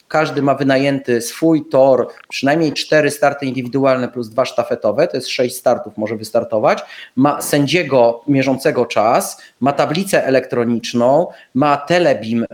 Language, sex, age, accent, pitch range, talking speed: Polish, male, 30-49, native, 120-150 Hz, 130 wpm